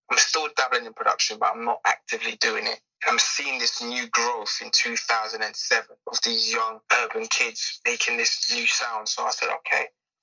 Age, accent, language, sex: 20-39, British, English, male